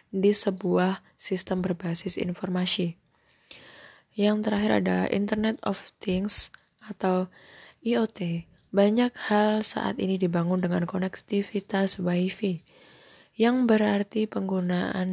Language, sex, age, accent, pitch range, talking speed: Indonesian, female, 10-29, native, 180-215 Hz, 95 wpm